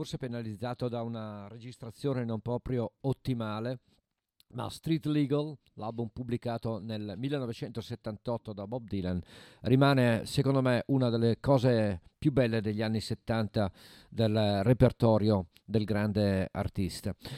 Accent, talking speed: native, 115 wpm